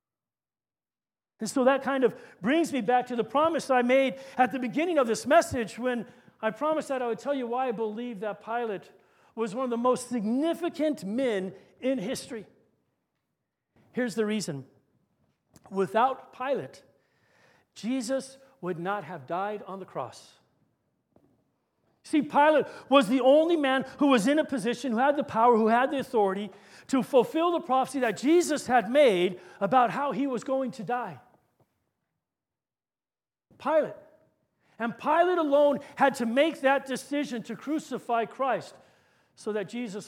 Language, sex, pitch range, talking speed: English, male, 215-280 Hz, 155 wpm